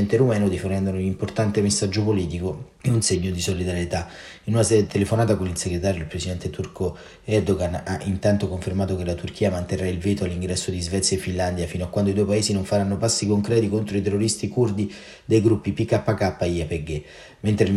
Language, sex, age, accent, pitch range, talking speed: Italian, male, 30-49, native, 95-105 Hz, 195 wpm